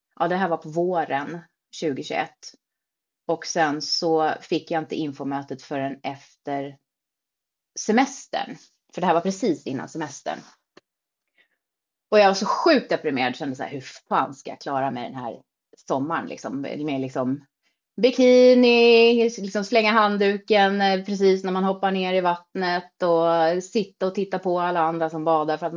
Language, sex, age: Swedish, female, 30-49